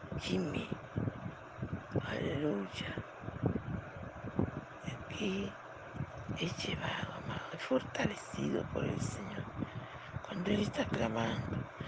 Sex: female